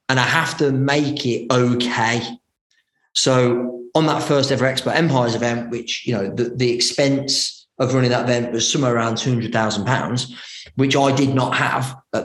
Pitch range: 120-135 Hz